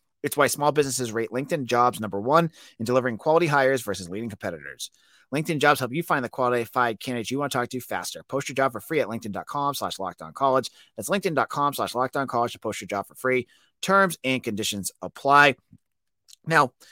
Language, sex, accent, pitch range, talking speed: English, male, American, 115-150 Hz, 195 wpm